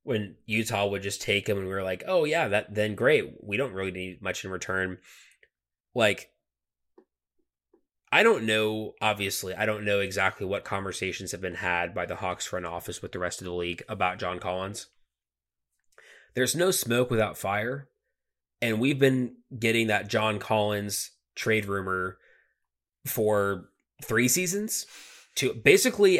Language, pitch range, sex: English, 95-120 Hz, male